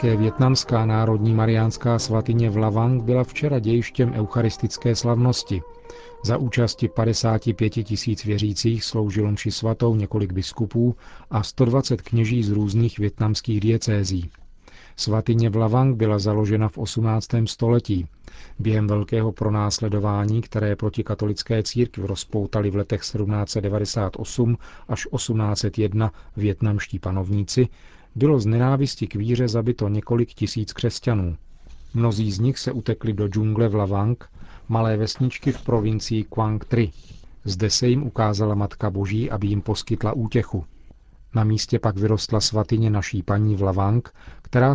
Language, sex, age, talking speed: Czech, male, 40-59, 125 wpm